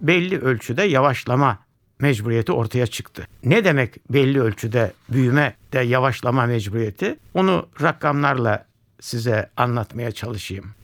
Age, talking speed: 60-79, 105 wpm